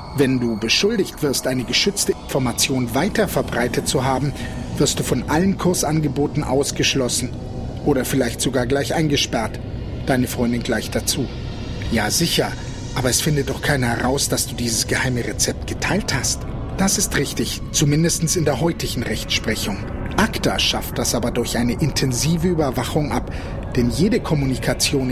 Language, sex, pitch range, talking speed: German, male, 120-150 Hz, 145 wpm